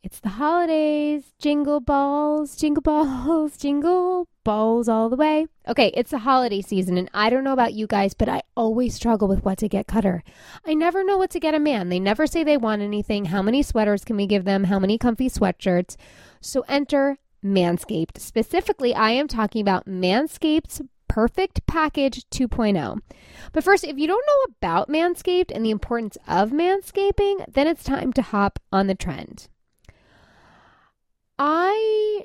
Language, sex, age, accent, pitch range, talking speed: English, female, 20-39, American, 205-295 Hz, 170 wpm